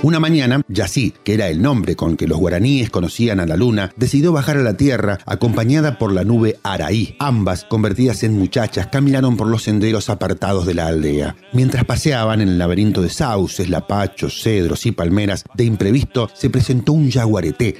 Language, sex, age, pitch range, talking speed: Spanish, male, 40-59, 90-125 Hz, 180 wpm